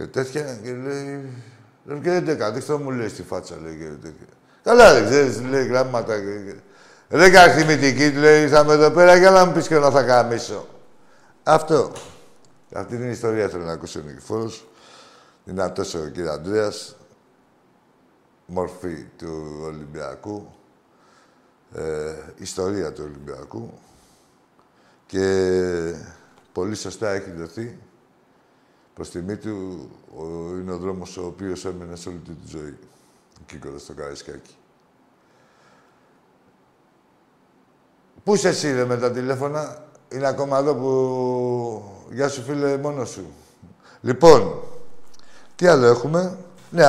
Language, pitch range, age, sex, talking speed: Greek, 95-145 Hz, 60-79, male, 125 wpm